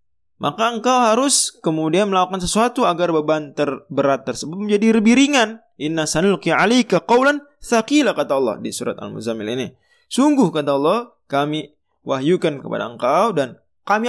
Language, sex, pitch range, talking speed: Indonesian, male, 140-230 Hz, 130 wpm